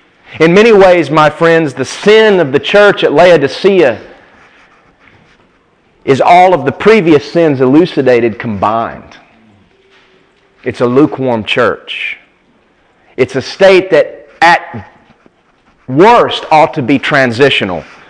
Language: English